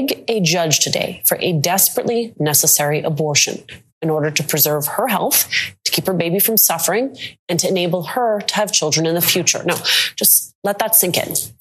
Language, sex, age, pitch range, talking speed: English, female, 30-49, 160-210 Hz, 180 wpm